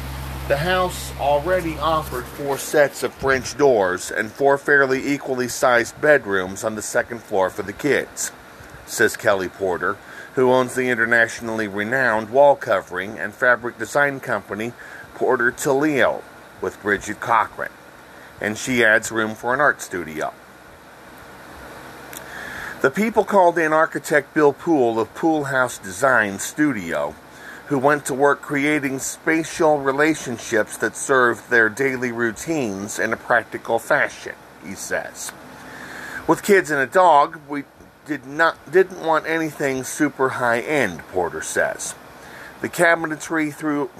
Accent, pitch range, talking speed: American, 110-150 Hz, 130 wpm